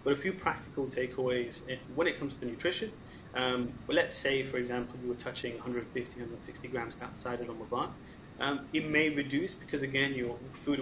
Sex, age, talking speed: male, 20-39, 195 wpm